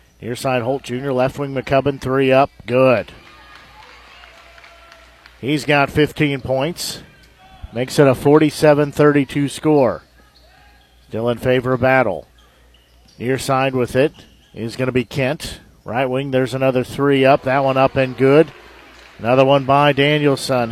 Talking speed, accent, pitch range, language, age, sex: 130 wpm, American, 95-140 Hz, English, 50-69, male